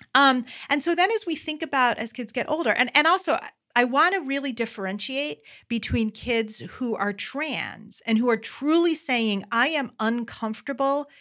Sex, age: female, 40-59